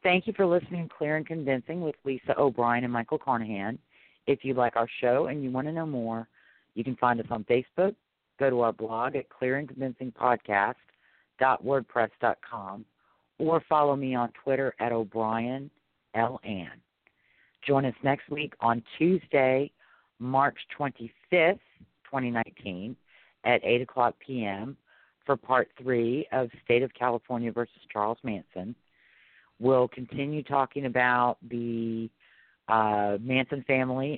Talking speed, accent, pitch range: 135 wpm, American, 115-135 Hz